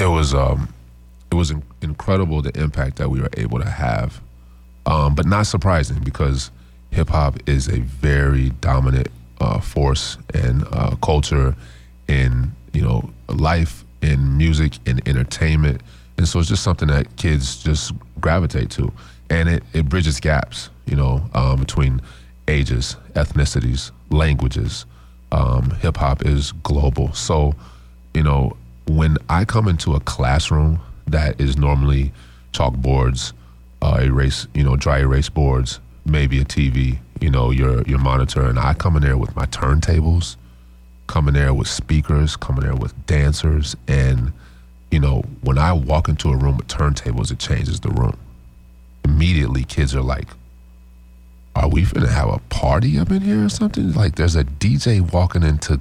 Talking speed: 160 wpm